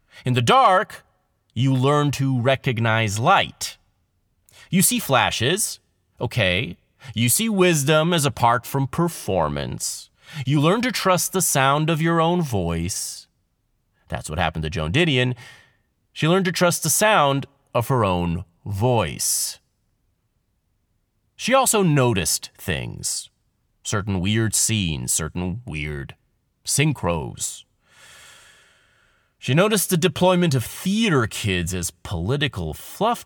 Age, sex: 30-49, male